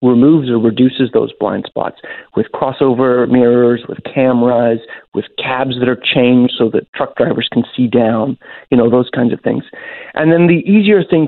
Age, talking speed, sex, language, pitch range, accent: 40-59, 180 wpm, male, English, 120-140 Hz, American